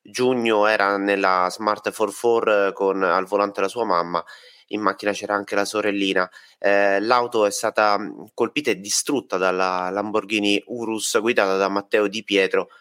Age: 30-49